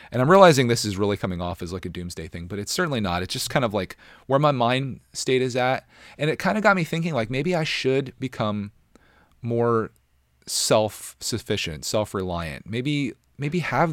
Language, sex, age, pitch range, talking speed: English, male, 30-49, 90-130 Hz, 200 wpm